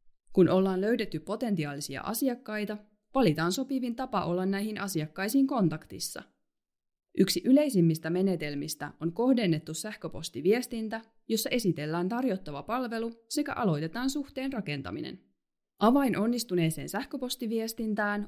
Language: Finnish